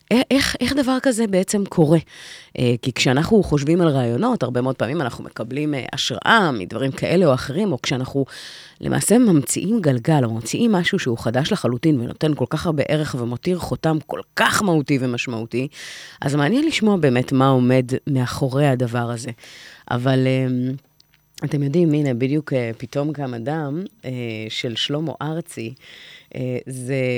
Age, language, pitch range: 30-49, Hebrew, 130-165 Hz